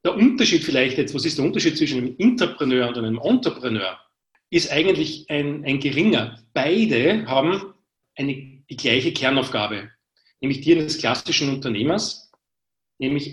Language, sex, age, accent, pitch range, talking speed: German, male, 40-59, Austrian, 125-155 Hz, 140 wpm